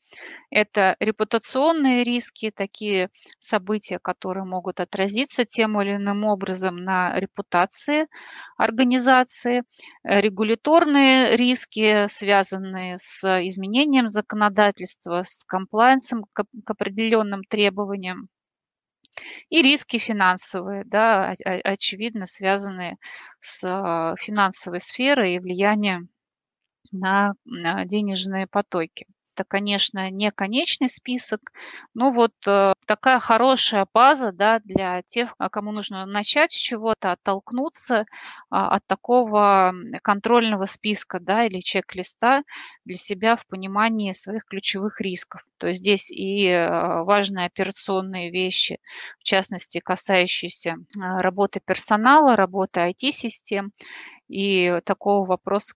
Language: Russian